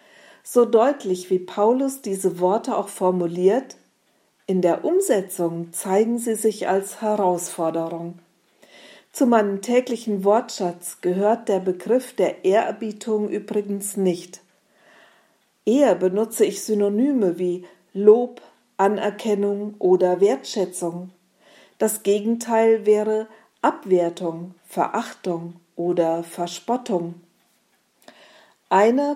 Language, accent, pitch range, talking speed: German, German, 180-225 Hz, 90 wpm